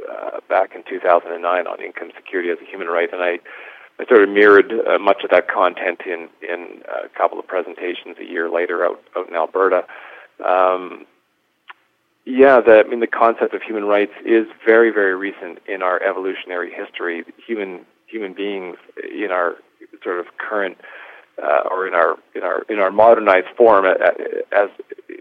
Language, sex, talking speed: English, male, 175 wpm